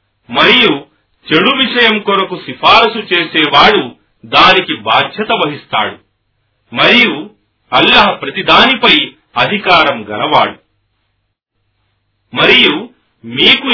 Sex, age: male, 40-59